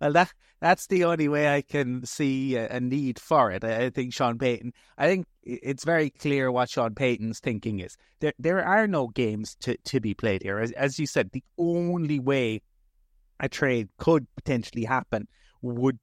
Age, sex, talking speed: 30-49, male, 185 wpm